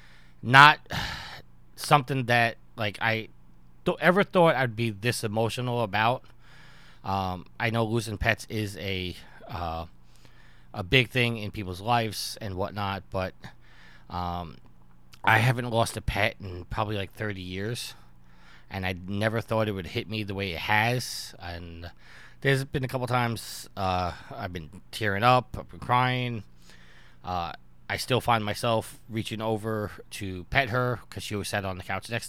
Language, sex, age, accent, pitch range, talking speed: English, male, 20-39, American, 90-115 Hz, 155 wpm